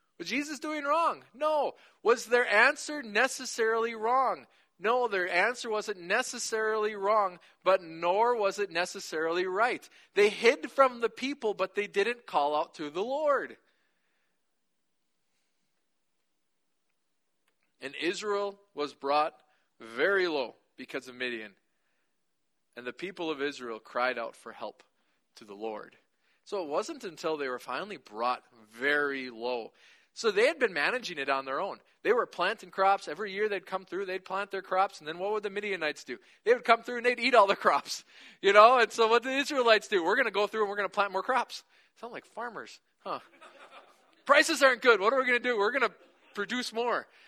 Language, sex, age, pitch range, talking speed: English, male, 40-59, 175-260 Hz, 185 wpm